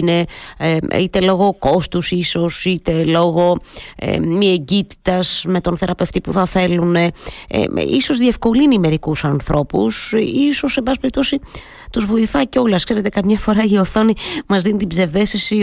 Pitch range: 160-205 Hz